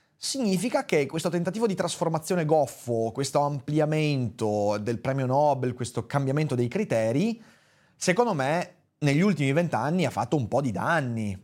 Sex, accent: male, native